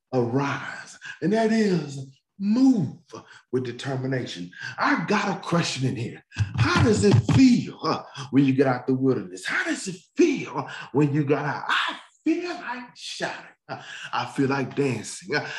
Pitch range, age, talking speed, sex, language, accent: 135-220 Hz, 40-59, 150 wpm, male, English, American